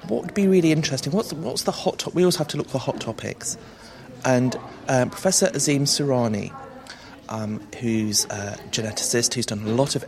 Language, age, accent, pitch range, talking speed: English, 30-49, British, 110-145 Hz, 185 wpm